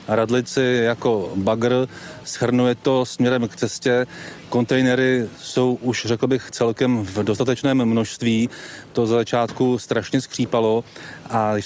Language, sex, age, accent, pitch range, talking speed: Czech, male, 30-49, native, 110-125 Hz, 120 wpm